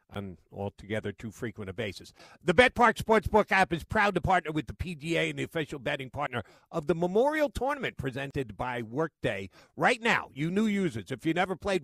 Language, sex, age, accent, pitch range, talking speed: English, male, 50-69, American, 145-185 Hz, 195 wpm